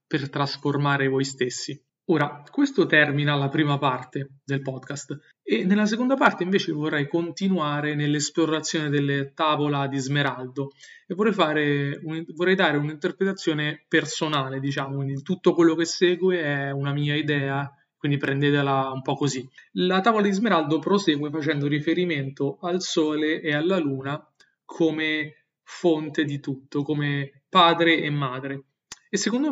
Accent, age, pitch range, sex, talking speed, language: native, 20-39, 140-165 Hz, male, 140 wpm, Italian